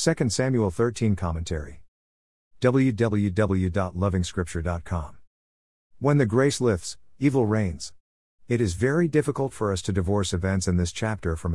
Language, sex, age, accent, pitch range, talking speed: English, male, 50-69, American, 85-115 Hz, 125 wpm